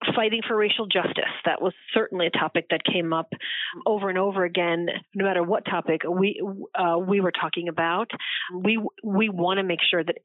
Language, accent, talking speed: English, American, 195 wpm